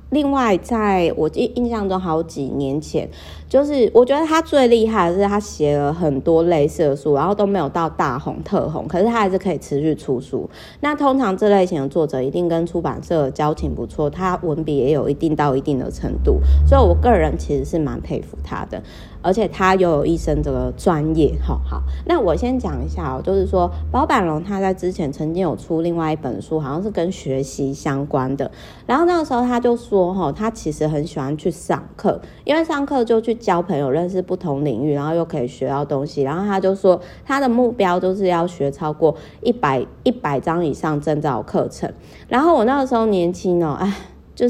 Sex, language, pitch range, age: female, Chinese, 145-210 Hz, 30-49